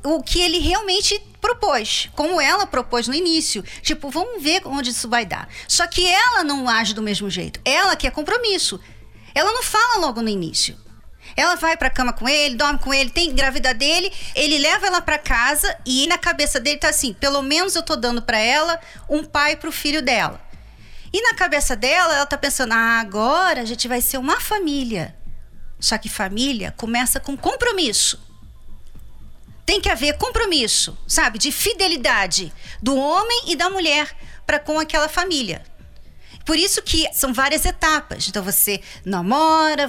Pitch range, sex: 245-340 Hz, female